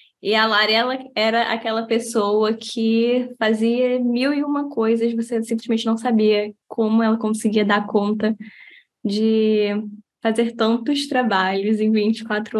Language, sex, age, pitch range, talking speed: Portuguese, female, 10-29, 215-240 Hz, 130 wpm